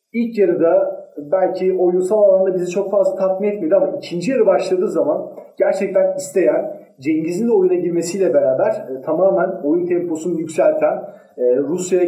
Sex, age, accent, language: male, 40-59, native, Turkish